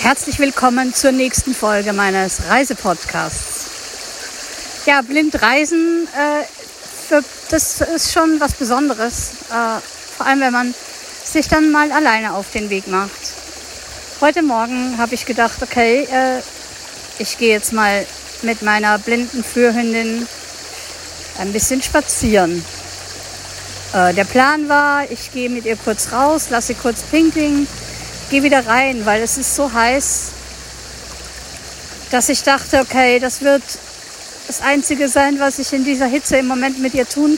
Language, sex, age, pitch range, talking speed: German, female, 50-69, 220-280 Hz, 140 wpm